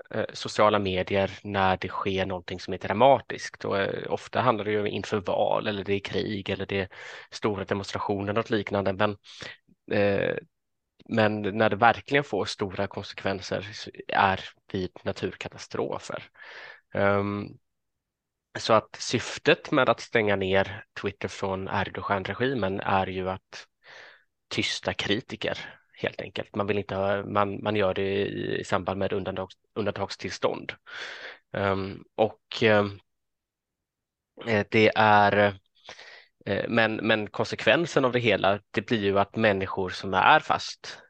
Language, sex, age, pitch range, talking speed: Swedish, male, 20-39, 95-105 Hz, 115 wpm